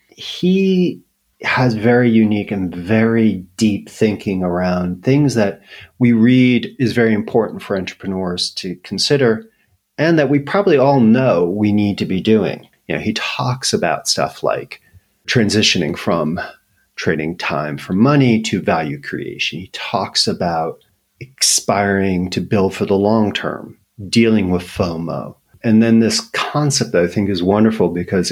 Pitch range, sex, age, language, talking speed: 95-115 Hz, male, 40-59, English, 150 wpm